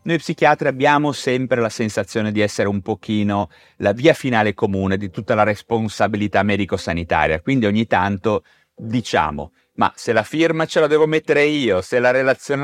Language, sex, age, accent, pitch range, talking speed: Italian, male, 30-49, native, 100-140 Hz, 165 wpm